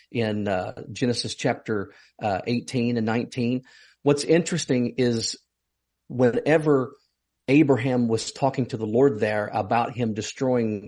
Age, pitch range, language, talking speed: 40-59, 115-135 Hz, English, 120 wpm